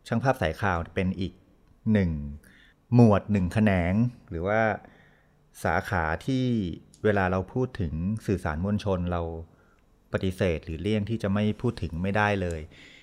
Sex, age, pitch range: male, 30-49, 90-110 Hz